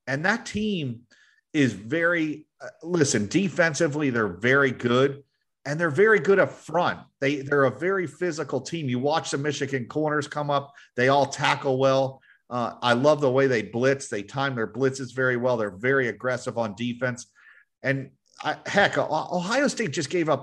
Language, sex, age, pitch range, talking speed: English, male, 40-59, 125-155 Hz, 175 wpm